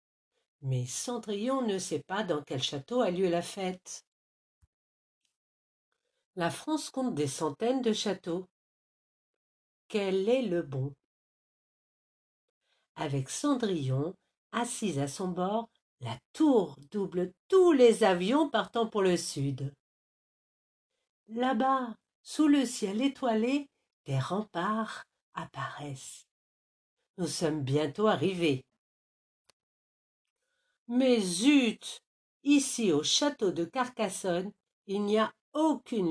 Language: French